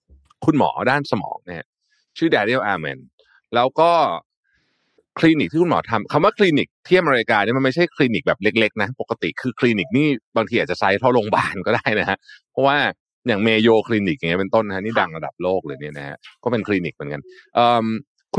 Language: Thai